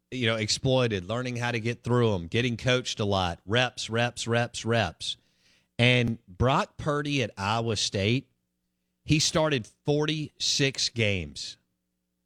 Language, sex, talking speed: English, male, 130 wpm